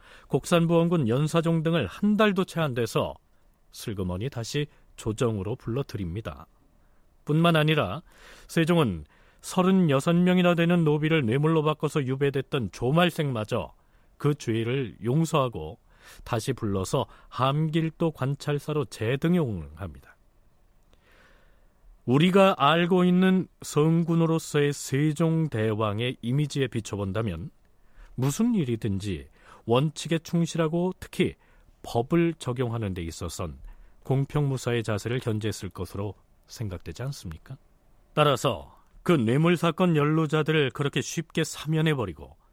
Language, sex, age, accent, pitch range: Korean, male, 40-59, native, 110-165 Hz